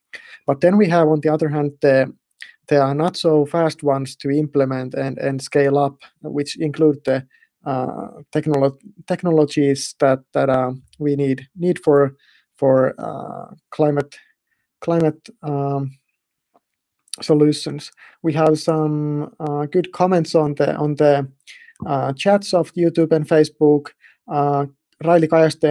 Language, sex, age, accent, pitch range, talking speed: Finnish, male, 30-49, native, 140-165 Hz, 140 wpm